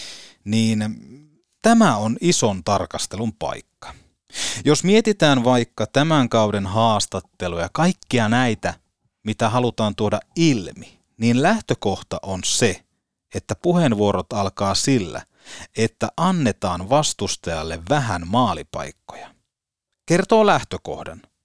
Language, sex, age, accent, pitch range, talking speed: Finnish, male, 30-49, native, 100-145 Hz, 90 wpm